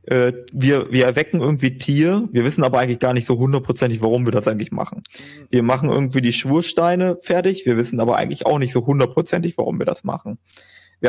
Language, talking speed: German, 200 wpm